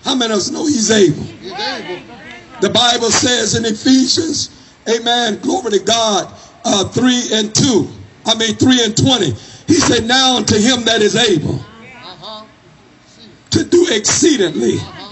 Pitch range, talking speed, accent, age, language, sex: 225-275 Hz, 145 wpm, American, 50-69, English, male